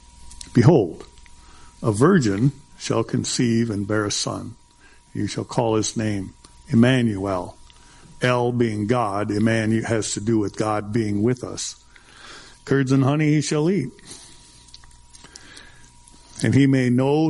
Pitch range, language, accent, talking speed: 110-150 Hz, English, American, 130 wpm